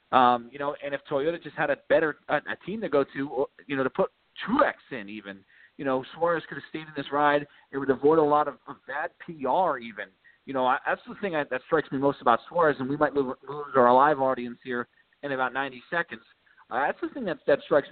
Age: 40-59